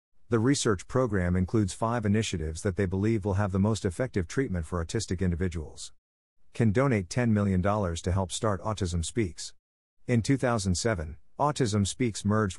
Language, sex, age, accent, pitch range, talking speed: English, male, 50-69, American, 90-115 Hz, 155 wpm